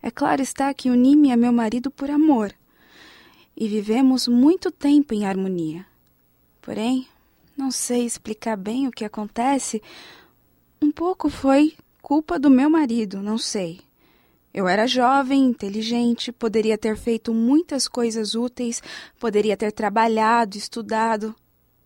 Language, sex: Portuguese, female